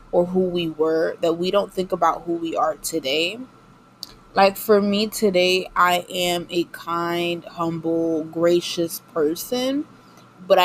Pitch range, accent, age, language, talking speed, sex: 175-215 Hz, American, 20-39, English, 140 wpm, female